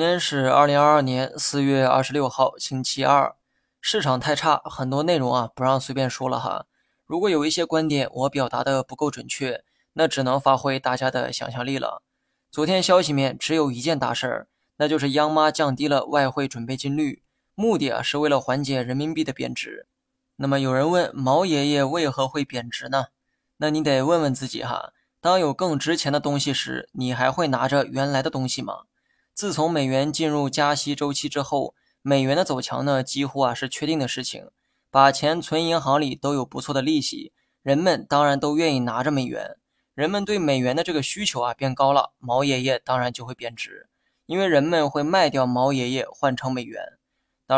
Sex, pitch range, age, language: male, 130-150 Hz, 20-39, Chinese